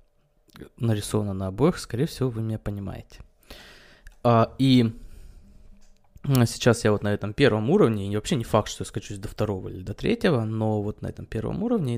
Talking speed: 170 wpm